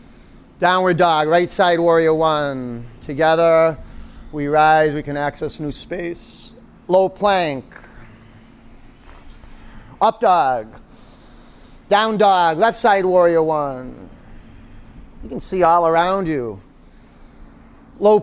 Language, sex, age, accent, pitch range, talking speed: English, male, 40-59, American, 125-185 Hz, 100 wpm